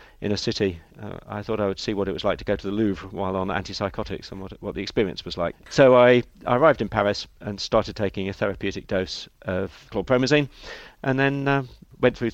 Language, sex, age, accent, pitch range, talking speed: English, male, 40-59, British, 95-120 Hz, 230 wpm